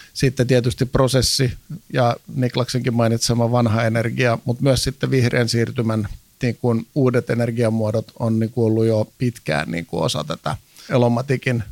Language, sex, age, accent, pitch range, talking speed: Finnish, male, 50-69, native, 115-130 Hz, 130 wpm